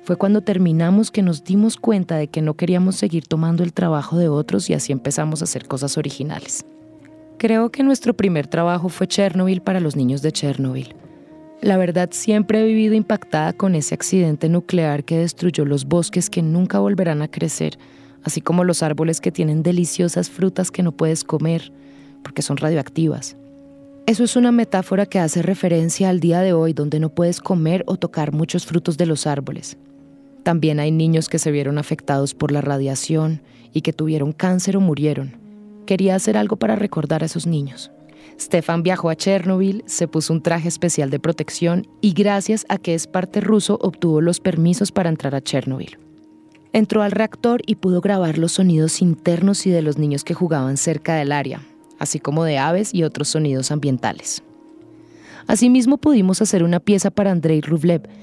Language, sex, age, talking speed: English, female, 20-39, 180 wpm